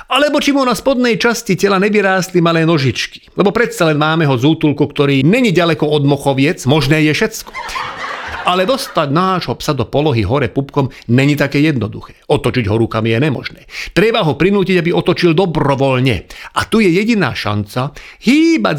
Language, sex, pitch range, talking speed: Slovak, male, 140-195 Hz, 165 wpm